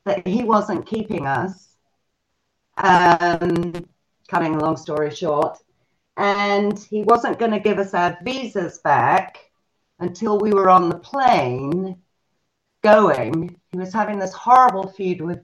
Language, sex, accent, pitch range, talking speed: English, female, British, 160-200 Hz, 135 wpm